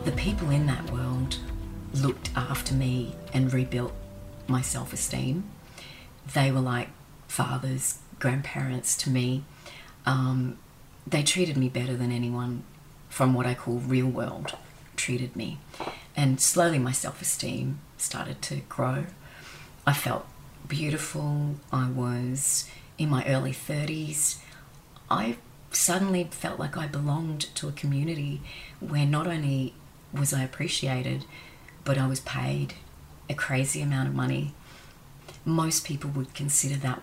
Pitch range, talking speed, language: 130-150 Hz, 130 wpm, English